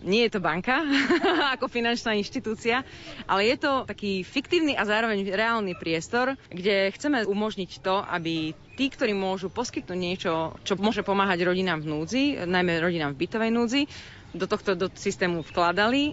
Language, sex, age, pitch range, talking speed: Slovak, female, 30-49, 175-215 Hz, 155 wpm